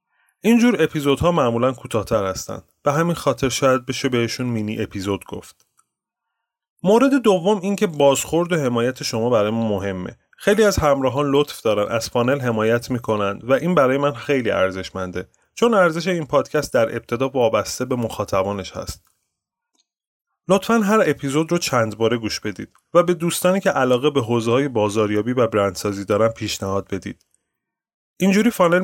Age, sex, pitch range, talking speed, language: 30-49, male, 100-150 Hz, 150 wpm, Persian